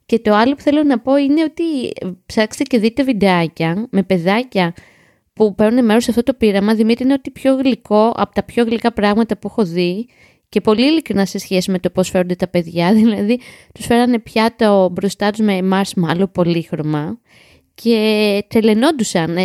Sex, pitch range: female, 185-235 Hz